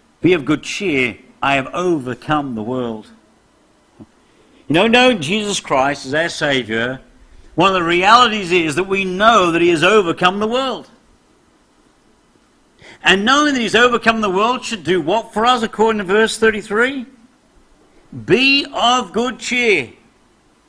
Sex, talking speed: male, 150 wpm